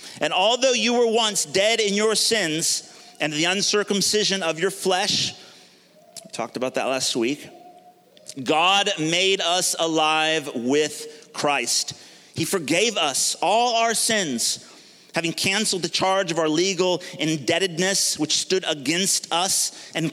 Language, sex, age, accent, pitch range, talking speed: English, male, 30-49, American, 160-205 Hz, 135 wpm